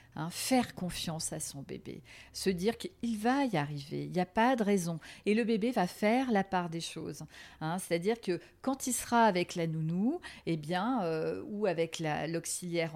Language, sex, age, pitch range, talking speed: French, female, 50-69, 165-205 Hz, 215 wpm